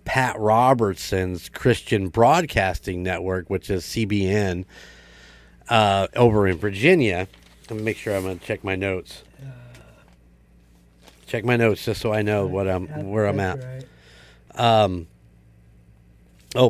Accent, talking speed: American, 125 wpm